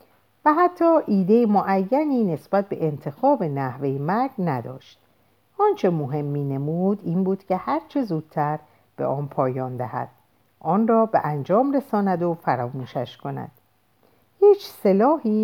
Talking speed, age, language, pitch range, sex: 130 wpm, 50-69, Persian, 135-225 Hz, female